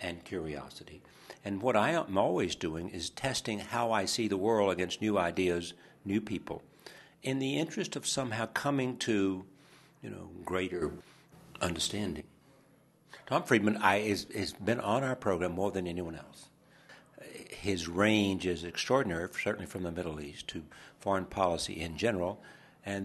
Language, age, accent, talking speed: English, 60-79, American, 150 wpm